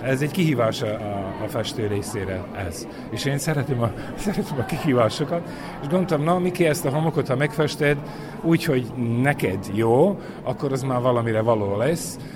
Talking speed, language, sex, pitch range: 165 wpm, Hungarian, male, 115-140 Hz